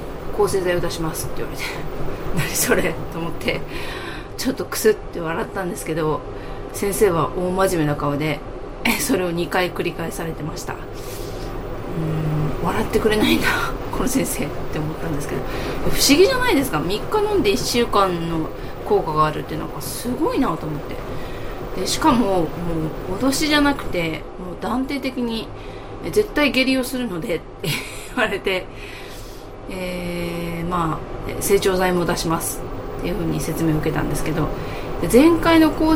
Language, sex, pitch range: Japanese, female, 165-260 Hz